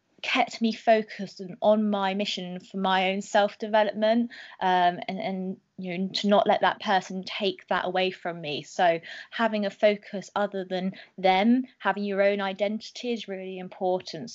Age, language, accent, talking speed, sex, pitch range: 20-39, English, British, 165 wpm, female, 180-210 Hz